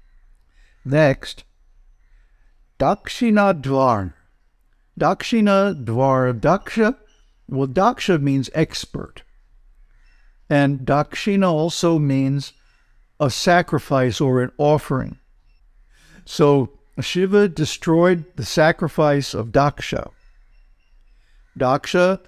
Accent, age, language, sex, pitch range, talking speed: American, 60-79, English, male, 125-160 Hz, 75 wpm